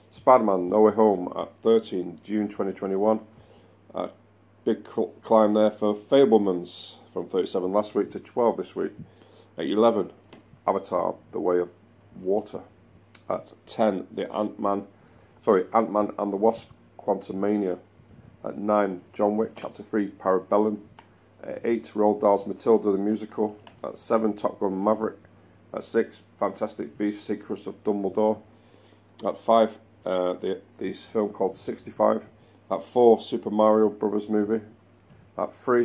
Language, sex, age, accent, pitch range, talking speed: English, male, 40-59, British, 100-110 Hz, 145 wpm